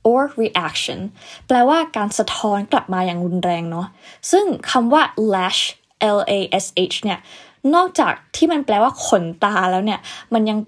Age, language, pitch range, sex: 20-39, Thai, 190-260 Hz, female